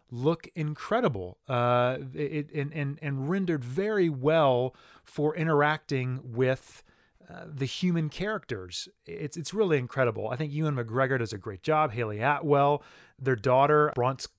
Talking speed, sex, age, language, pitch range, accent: 140 wpm, male, 30-49, English, 115-150 Hz, American